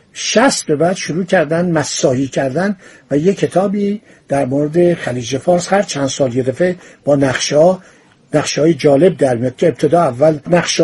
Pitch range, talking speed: 145-195 Hz, 170 wpm